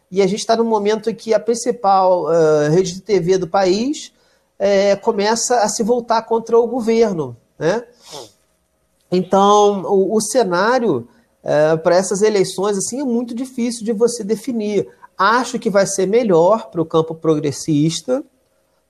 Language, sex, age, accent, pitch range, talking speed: Portuguese, male, 40-59, Brazilian, 175-230 Hz, 145 wpm